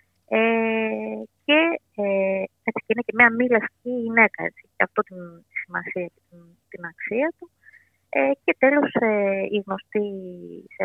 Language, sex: Greek, female